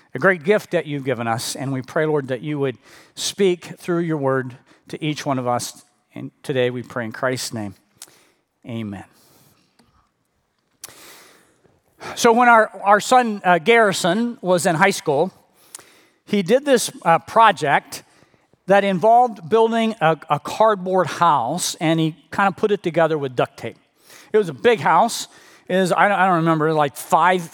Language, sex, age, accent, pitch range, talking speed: English, male, 40-59, American, 150-205 Hz, 165 wpm